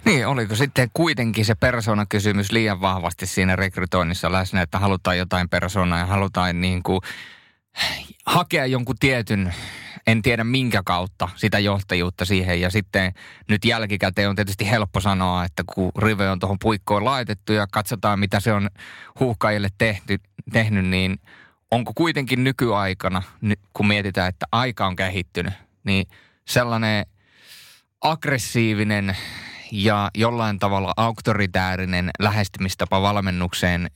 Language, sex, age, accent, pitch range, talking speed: Finnish, male, 20-39, native, 95-130 Hz, 120 wpm